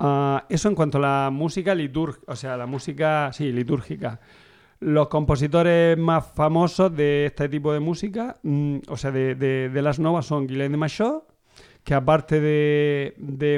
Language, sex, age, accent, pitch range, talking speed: Spanish, male, 40-59, Spanish, 135-160 Hz, 170 wpm